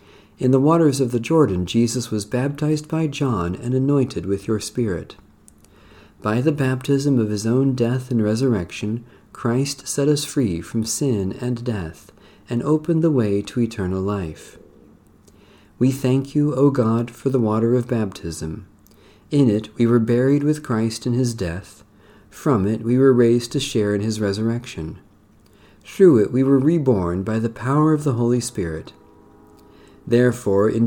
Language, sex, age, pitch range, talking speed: English, male, 50-69, 100-130 Hz, 165 wpm